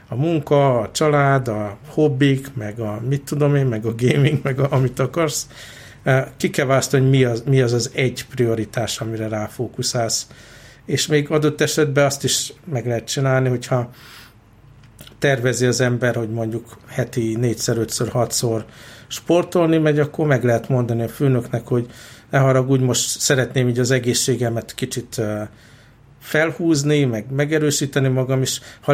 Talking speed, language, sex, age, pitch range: 150 wpm, Hungarian, male, 60-79, 115-140 Hz